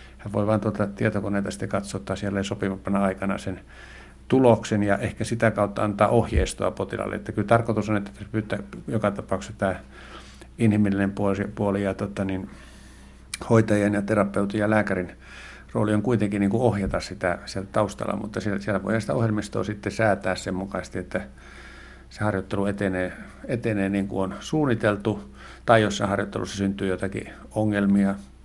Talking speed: 145 wpm